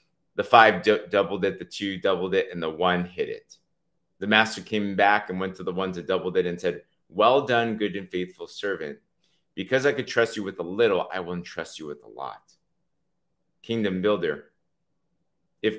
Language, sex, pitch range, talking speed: English, male, 95-130 Hz, 200 wpm